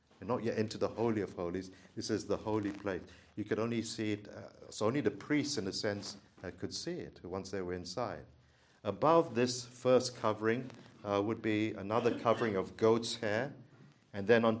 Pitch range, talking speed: 100-135 Hz, 200 wpm